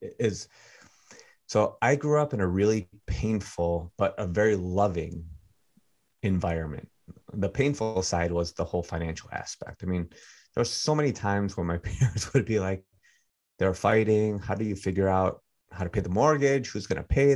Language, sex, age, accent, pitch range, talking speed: English, male, 30-49, American, 90-110 Hz, 175 wpm